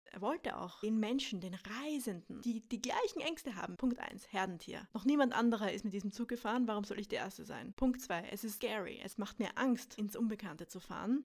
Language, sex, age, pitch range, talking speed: German, female, 20-39, 205-245 Hz, 225 wpm